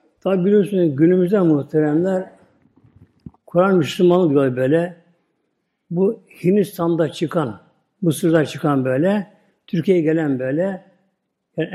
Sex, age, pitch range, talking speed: male, 60-79, 160-215 Hz, 85 wpm